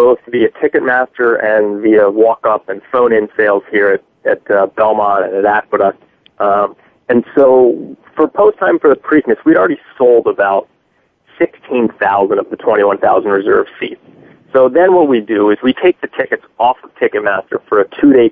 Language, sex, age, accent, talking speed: English, male, 30-49, American, 170 wpm